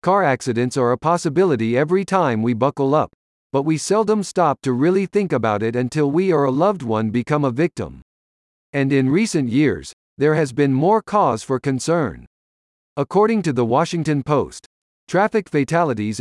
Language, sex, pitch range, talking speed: English, male, 120-175 Hz, 170 wpm